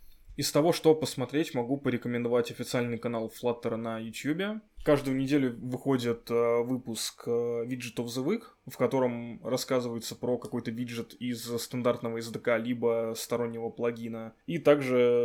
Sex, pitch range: male, 115-130 Hz